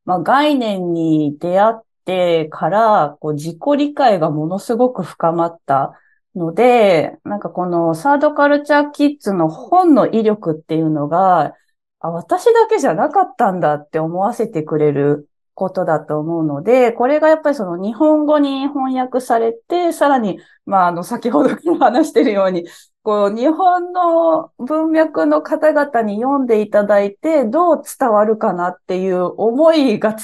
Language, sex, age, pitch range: Japanese, female, 20-39, 170-285 Hz